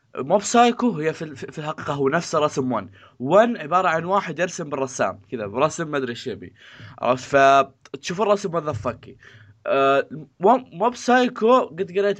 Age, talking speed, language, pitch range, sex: 20-39, 150 wpm, Arabic, 130-170 Hz, male